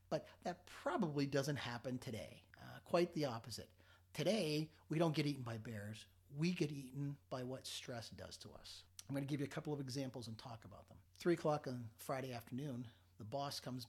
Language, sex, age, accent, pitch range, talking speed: English, male, 40-59, American, 105-145 Hz, 205 wpm